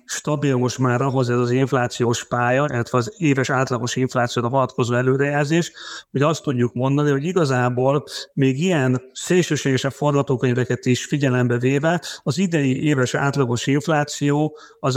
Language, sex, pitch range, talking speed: Hungarian, male, 120-140 Hz, 130 wpm